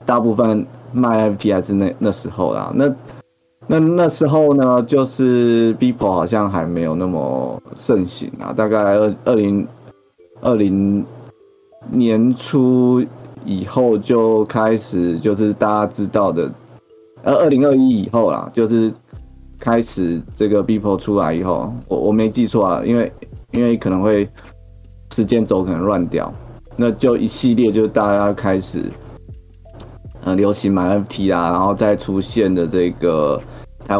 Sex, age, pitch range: male, 30-49, 95-115 Hz